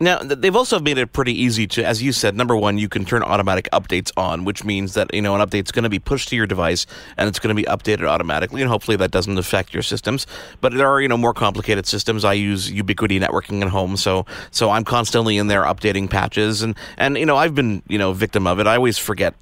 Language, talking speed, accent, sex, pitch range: English, 255 wpm, American, male, 100-130 Hz